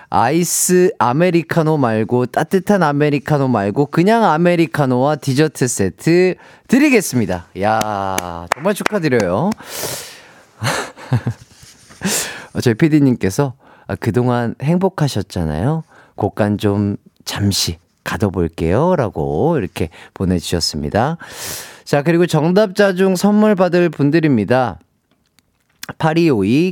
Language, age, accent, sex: Korean, 40-59, native, male